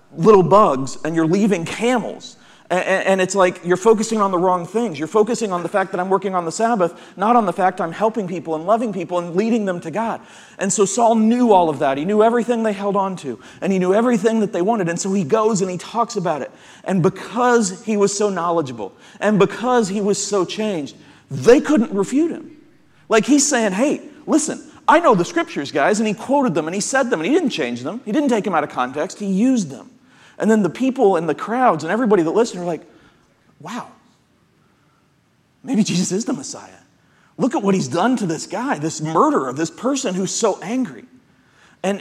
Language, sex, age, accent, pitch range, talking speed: English, male, 40-59, American, 180-230 Hz, 220 wpm